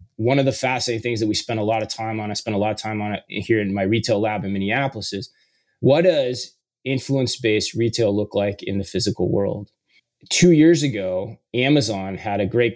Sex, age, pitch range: male, 20-39, 105-130 Hz